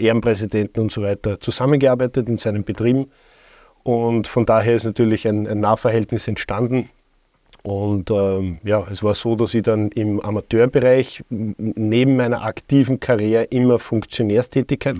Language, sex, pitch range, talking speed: German, male, 110-125 Hz, 135 wpm